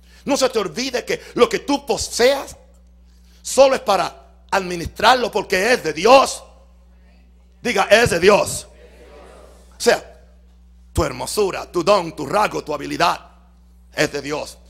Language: Spanish